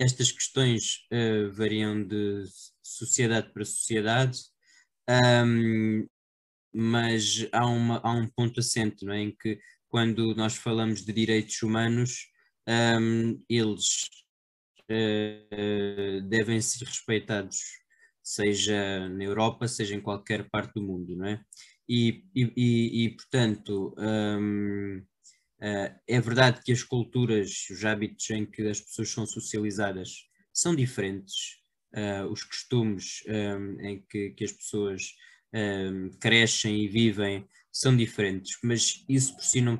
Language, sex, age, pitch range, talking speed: Portuguese, male, 20-39, 100-115 Hz, 115 wpm